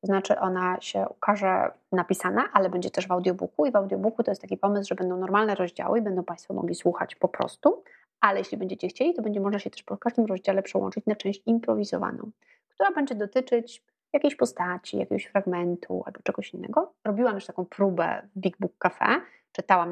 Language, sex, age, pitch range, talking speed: Polish, female, 30-49, 190-240 Hz, 195 wpm